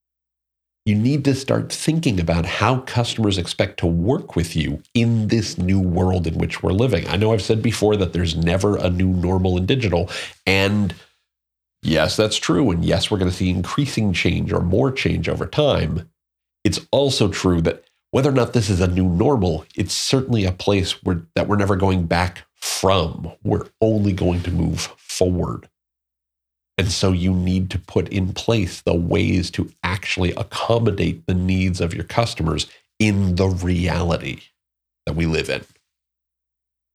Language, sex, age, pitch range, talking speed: English, male, 40-59, 85-105 Hz, 170 wpm